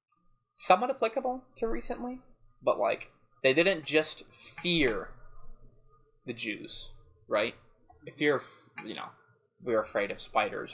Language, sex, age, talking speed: English, male, 20-39, 110 wpm